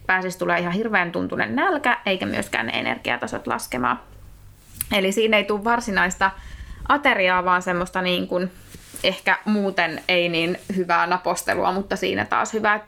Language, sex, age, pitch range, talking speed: Finnish, female, 20-39, 180-215 Hz, 145 wpm